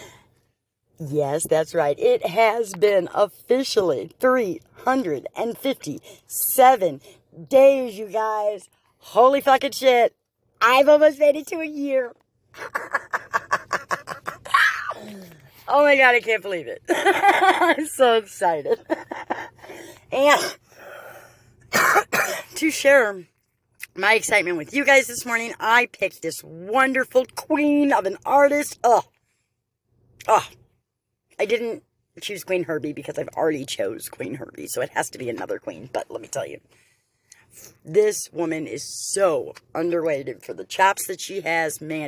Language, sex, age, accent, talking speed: English, female, 40-59, American, 125 wpm